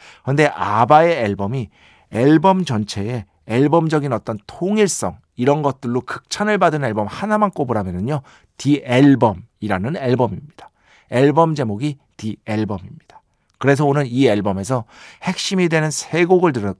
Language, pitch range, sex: Korean, 110-155 Hz, male